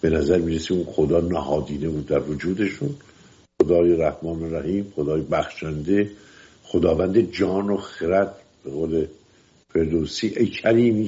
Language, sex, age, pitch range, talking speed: English, male, 60-79, 80-115 Hz, 125 wpm